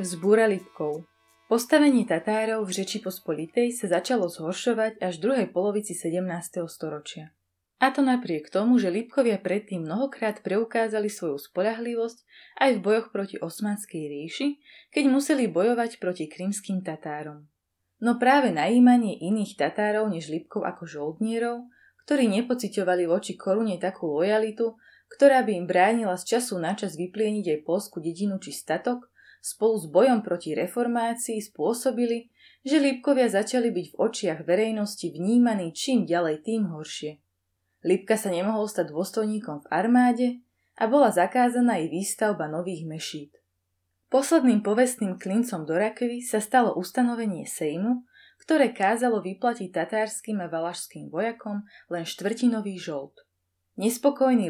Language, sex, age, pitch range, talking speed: Slovak, female, 20-39, 170-235 Hz, 130 wpm